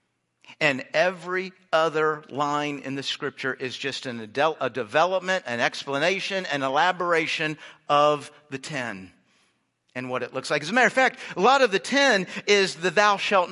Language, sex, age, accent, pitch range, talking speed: English, male, 50-69, American, 175-250 Hz, 165 wpm